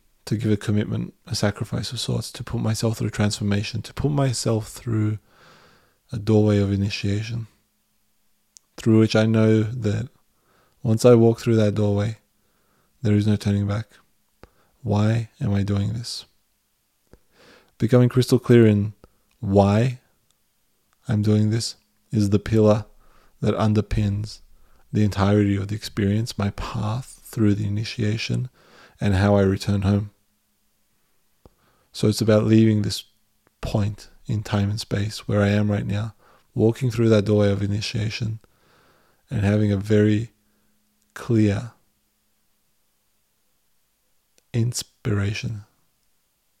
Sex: male